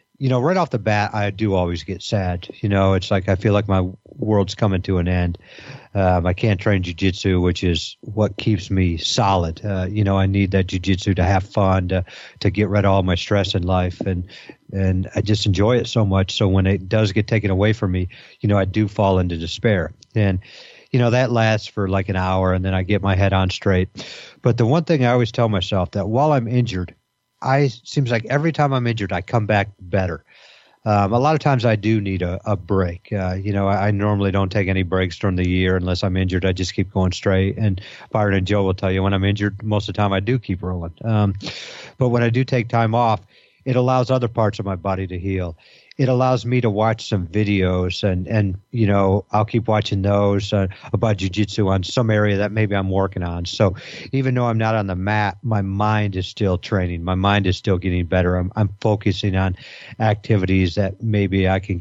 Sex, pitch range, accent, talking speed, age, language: male, 95-110 Hz, American, 235 wpm, 50-69, English